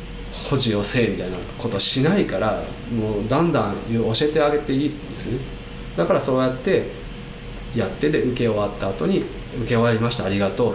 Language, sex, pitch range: Japanese, male, 100-135 Hz